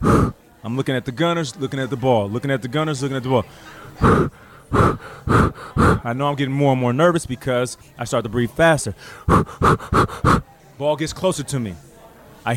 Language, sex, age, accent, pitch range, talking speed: English, male, 30-49, American, 130-185 Hz, 175 wpm